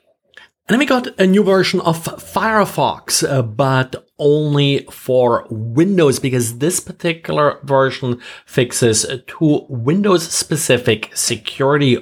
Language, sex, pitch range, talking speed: English, male, 115-155 Hz, 115 wpm